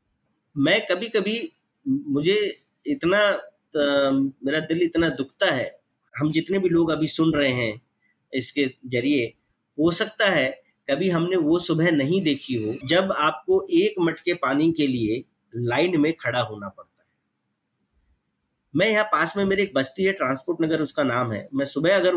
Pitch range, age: 140-195 Hz, 30-49